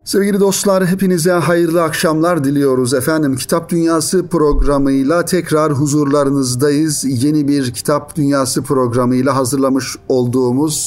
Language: Turkish